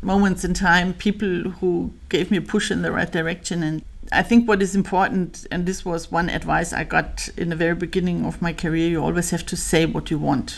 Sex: female